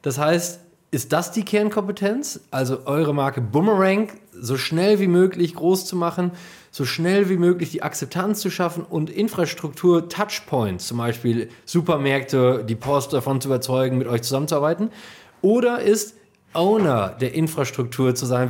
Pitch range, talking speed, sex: 145-205 Hz, 145 wpm, male